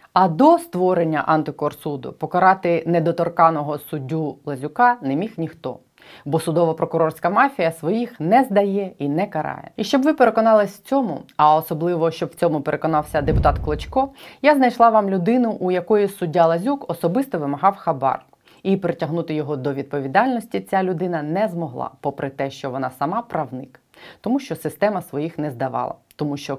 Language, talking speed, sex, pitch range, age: Ukrainian, 155 wpm, female, 145-185 Hz, 30-49